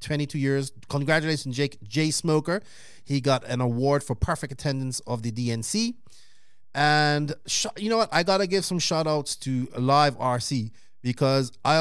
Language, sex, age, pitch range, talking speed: English, male, 30-49, 115-145 Hz, 160 wpm